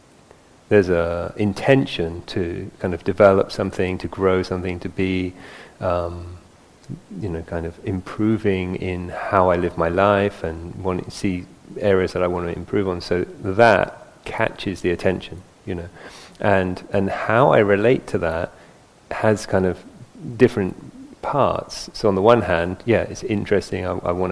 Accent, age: British, 30-49